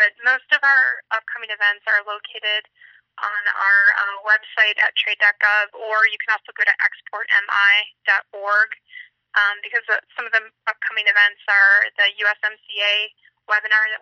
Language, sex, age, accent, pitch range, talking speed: English, female, 20-39, American, 205-230 Hz, 140 wpm